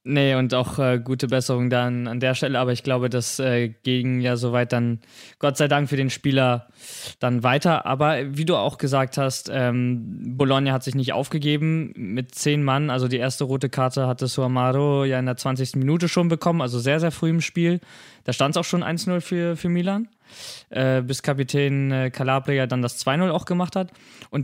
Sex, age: male, 20-39